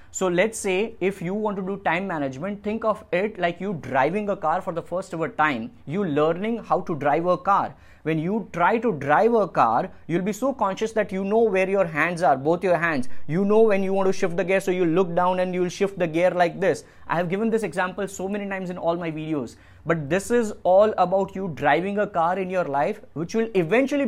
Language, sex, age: English, male, 20-39